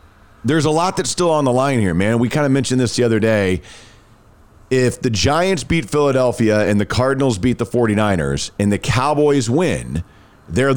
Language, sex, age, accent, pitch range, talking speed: English, male, 40-59, American, 105-135 Hz, 190 wpm